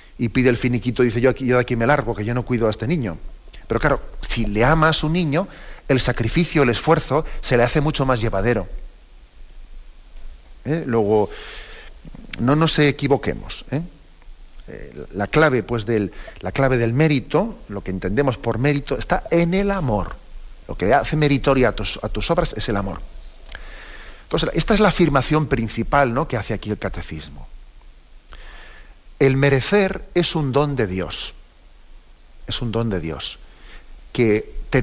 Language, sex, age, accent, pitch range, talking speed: Spanish, male, 40-59, Spanish, 105-145 Hz, 170 wpm